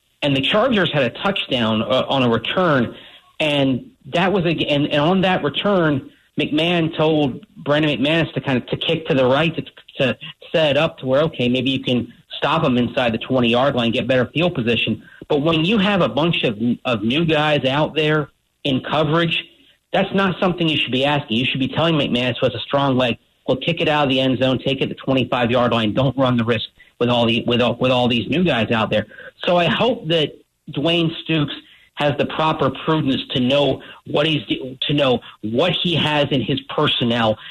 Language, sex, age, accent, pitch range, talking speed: English, male, 40-59, American, 125-155 Hz, 215 wpm